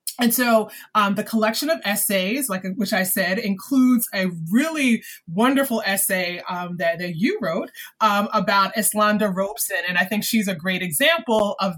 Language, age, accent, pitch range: English, 20-39, American, 180-225 Hz